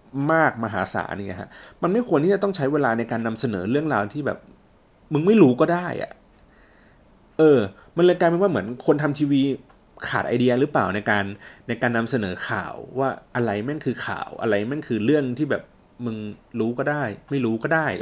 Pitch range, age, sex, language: 115-160 Hz, 30-49, male, Thai